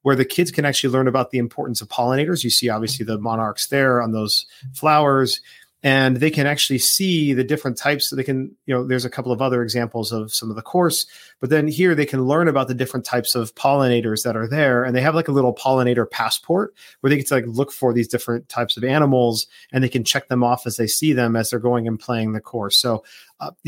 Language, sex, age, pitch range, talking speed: English, male, 40-59, 120-140 Hz, 250 wpm